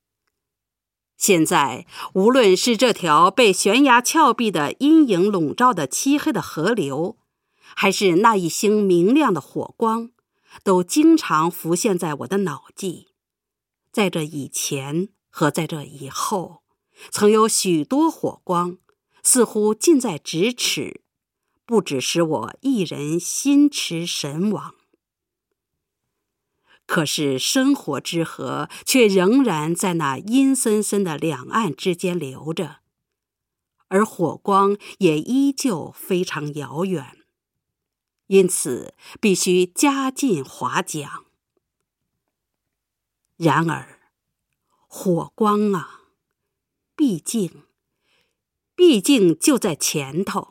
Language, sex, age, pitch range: English, female, 50-69, 165-235 Hz